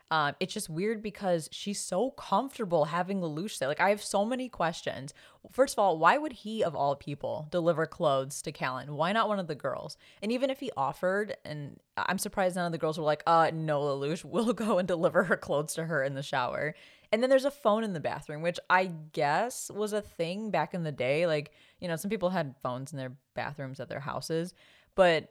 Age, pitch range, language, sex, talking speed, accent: 20-39, 145-195 Hz, English, female, 230 wpm, American